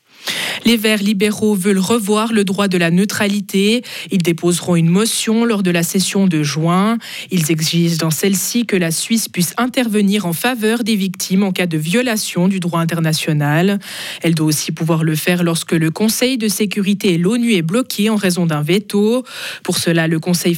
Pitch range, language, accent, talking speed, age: 170-220 Hz, French, French, 185 wpm, 20-39